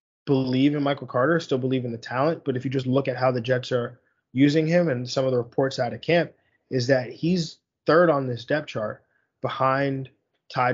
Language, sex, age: English, male, 20-39